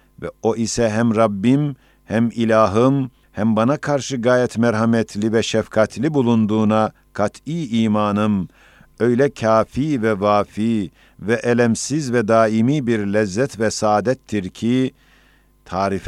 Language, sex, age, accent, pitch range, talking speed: Turkish, male, 50-69, native, 105-125 Hz, 115 wpm